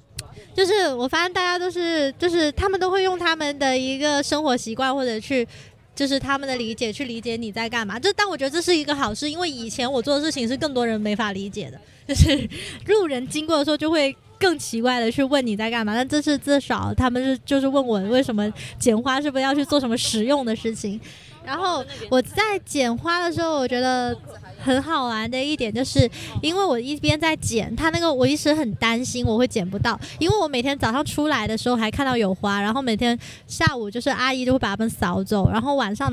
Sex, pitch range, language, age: female, 230-295 Hz, Chinese, 20-39